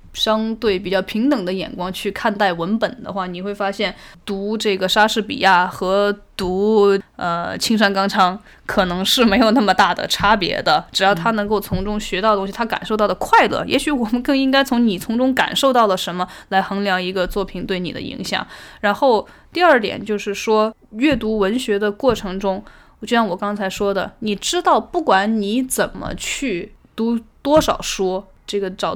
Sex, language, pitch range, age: female, Chinese, 190-235 Hz, 10-29